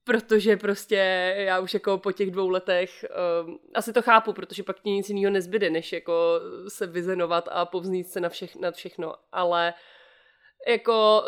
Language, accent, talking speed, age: Czech, native, 160 wpm, 30-49